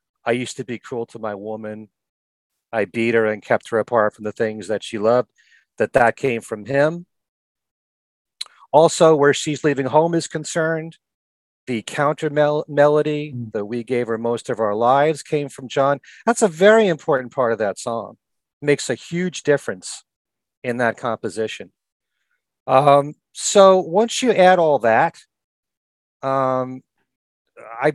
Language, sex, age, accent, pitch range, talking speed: English, male, 40-59, American, 115-165 Hz, 150 wpm